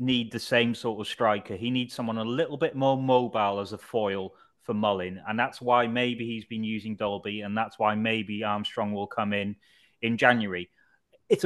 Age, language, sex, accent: 30-49, English, male, British